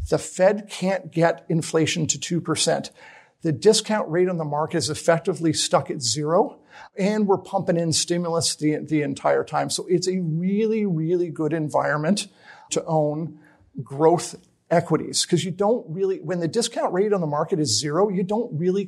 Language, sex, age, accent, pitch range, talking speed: English, male, 50-69, American, 155-195 Hz, 175 wpm